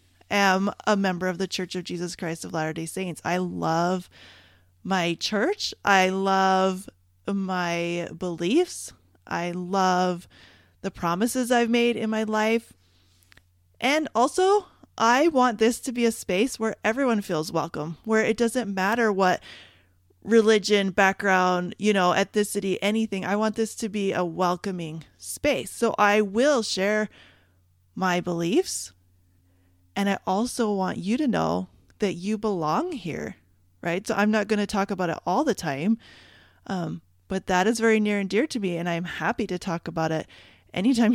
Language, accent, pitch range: English, American, 150-220 Hz